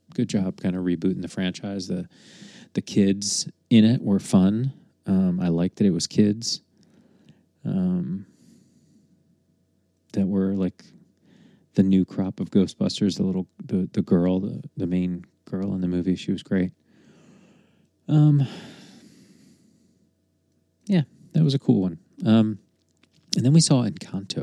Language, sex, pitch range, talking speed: English, male, 90-105 Hz, 140 wpm